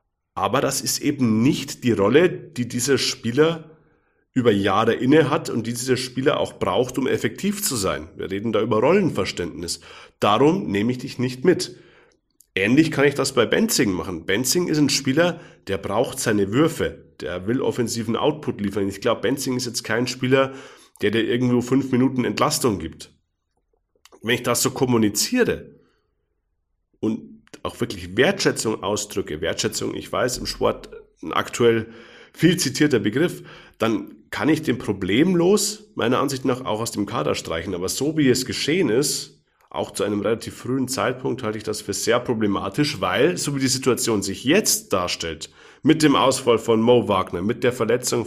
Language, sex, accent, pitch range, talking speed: German, male, German, 110-140 Hz, 170 wpm